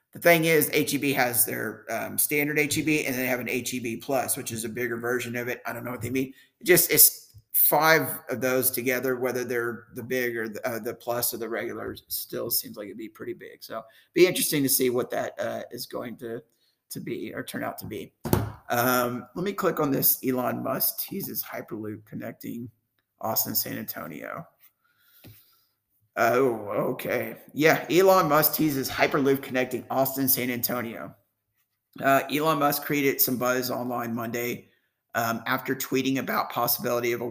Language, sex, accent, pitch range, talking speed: English, male, American, 120-135 Hz, 180 wpm